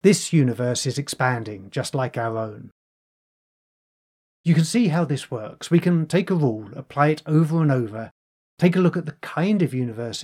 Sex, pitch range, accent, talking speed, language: male, 120-160 Hz, British, 190 wpm, English